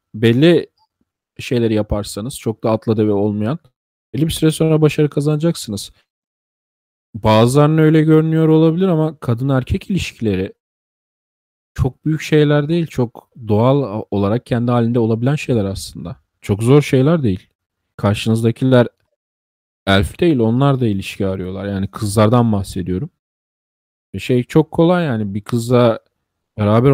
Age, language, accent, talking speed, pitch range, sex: 40-59, Turkish, native, 120 wpm, 95-130 Hz, male